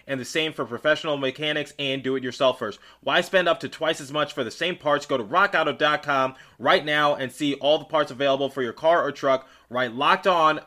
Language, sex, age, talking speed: English, male, 20-39, 230 wpm